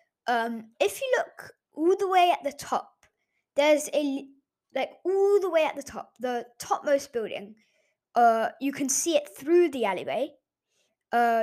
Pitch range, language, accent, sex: 230-290 Hz, English, British, female